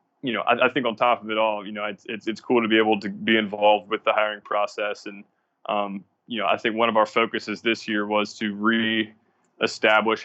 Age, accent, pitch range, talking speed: 20-39, American, 105-110 Hz, 240 wpm